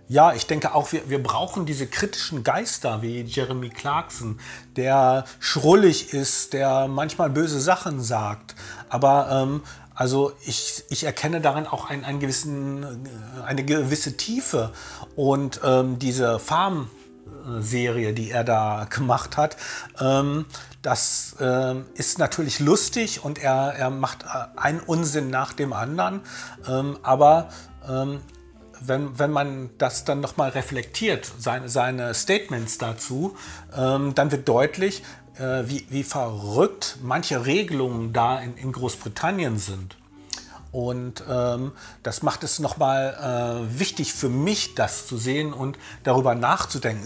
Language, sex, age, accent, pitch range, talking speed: German, male, 40-59, German, 120-145 Hz, 135 wpm